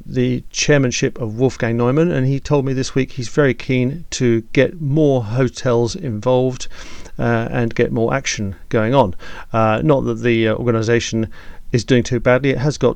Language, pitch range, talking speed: English, 110-135 Hz, 175 wpm